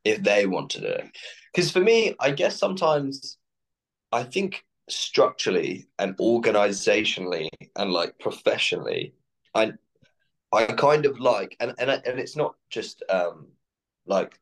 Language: English